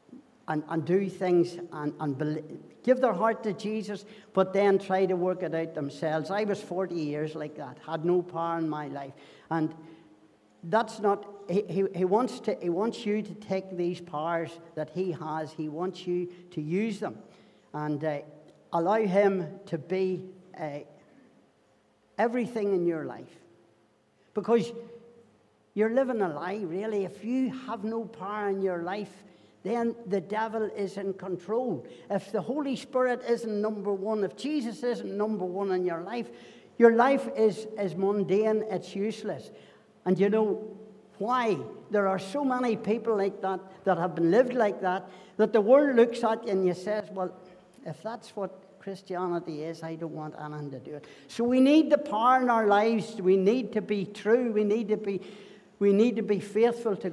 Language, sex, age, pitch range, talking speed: English, male, 60-79, 175-220 Hz, 180 wpm